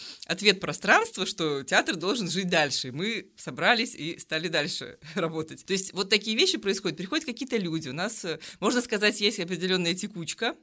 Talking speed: 165 wpm